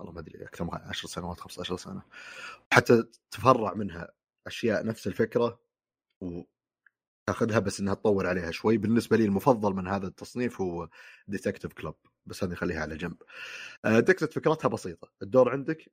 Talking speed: 150 wpm